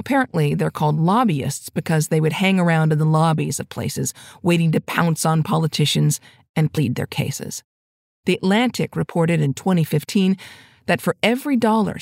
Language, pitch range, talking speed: English, 145-190 Hz, 160 wpm